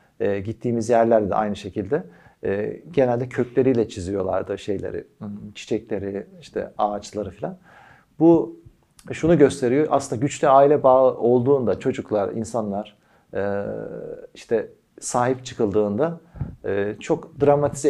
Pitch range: 110-145 Hz